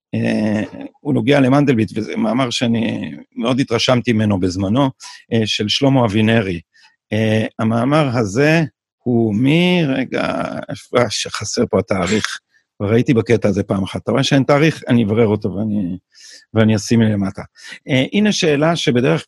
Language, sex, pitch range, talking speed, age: Hebrew, male, 110-150 Hz, 145 wpm, 50-69